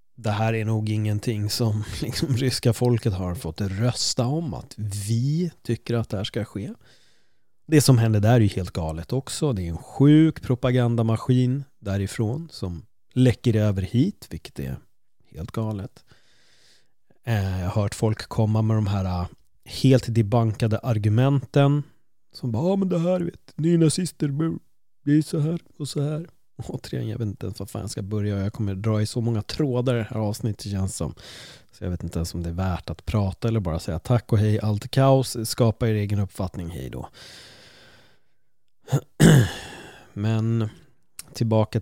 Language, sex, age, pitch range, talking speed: Swedish, male, 30-49, 100-130 Hz, 170 wpm